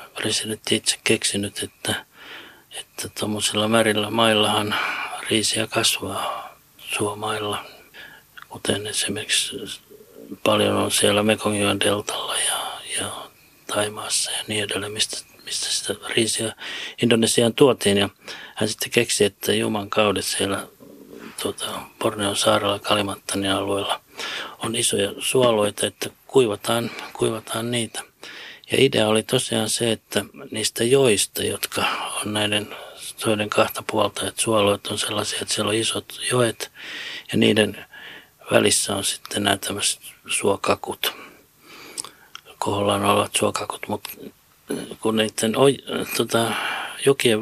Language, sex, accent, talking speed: Finnish, male, native, 110 wpm